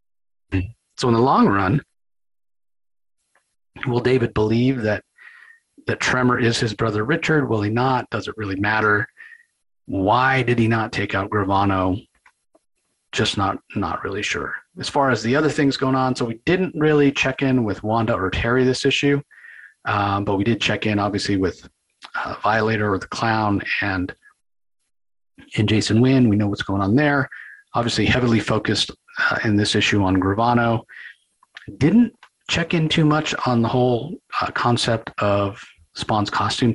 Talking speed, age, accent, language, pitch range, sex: 160 wpm, 40-59, American, English, 105-130 Hz, male